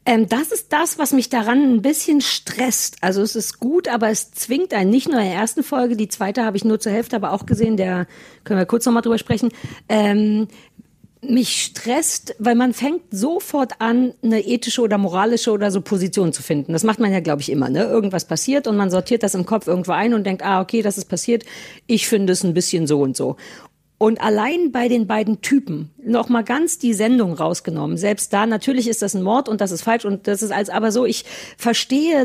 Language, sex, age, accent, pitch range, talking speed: German, female, 50-69, German, 205-255 Hz, 225 wpm